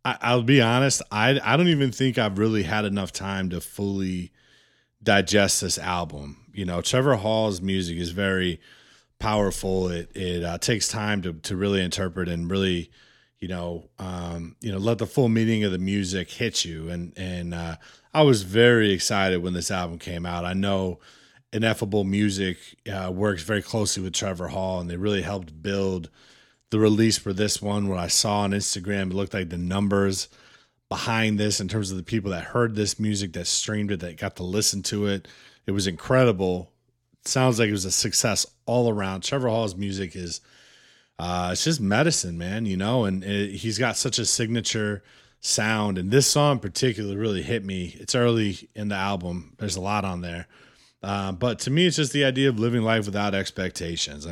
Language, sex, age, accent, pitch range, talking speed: English, male, 30-49, American, 90-110 Hz, 195 wpm